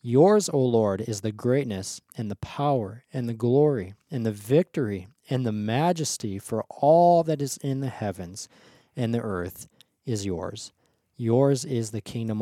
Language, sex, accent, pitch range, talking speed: English, male, American, 110-135 Hz, 165 wpm